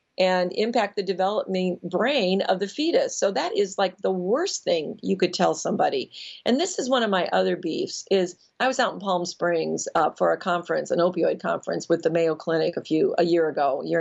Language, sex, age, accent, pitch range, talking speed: English, female, 40-59, American, 170-225 Hz, 225 wpm